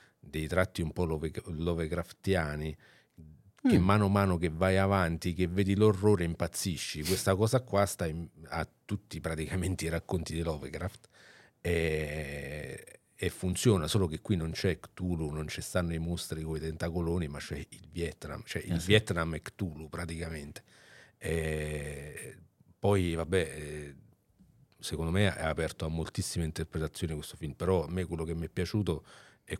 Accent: native